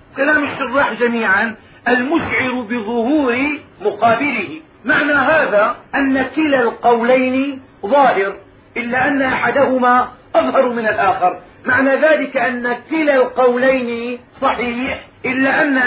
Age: 40-59